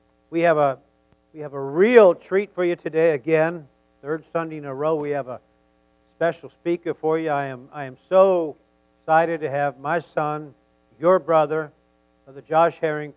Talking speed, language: 180 wpm, English